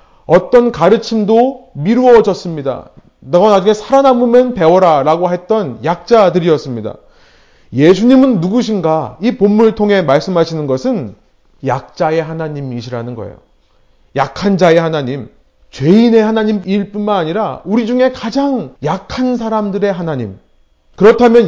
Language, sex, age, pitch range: Korean, male, 30-49, 140-225 Hz